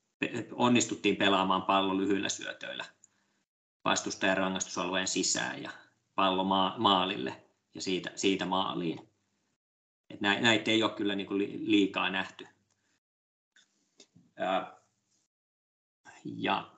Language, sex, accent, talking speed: Finnish, male, native, 85 wpm